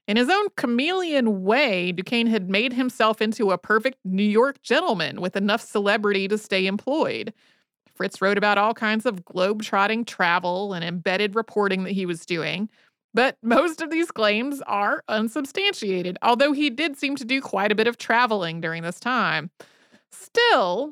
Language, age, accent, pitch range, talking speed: English, 30-49, American, 200-245 Hz, 165 wpm